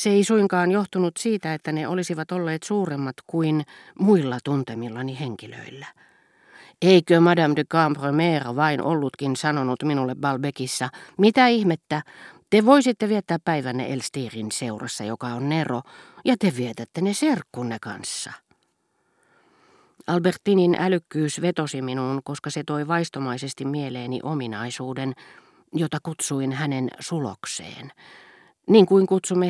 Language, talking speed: Finnish, 115 wpm